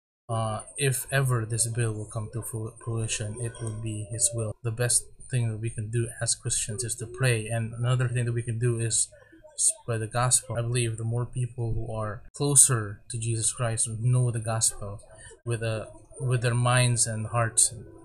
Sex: male